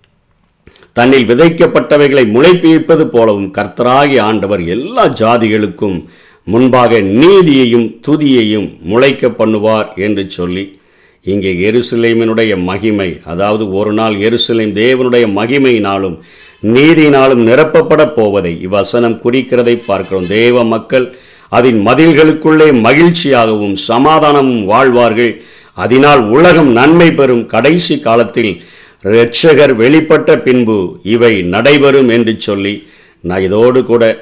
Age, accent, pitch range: 50-69, native, 105-135 Hz